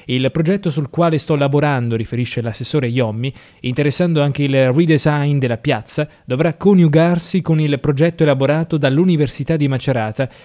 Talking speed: 140 wpm